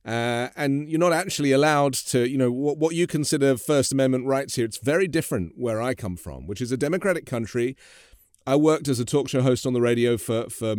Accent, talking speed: British, 230 wpm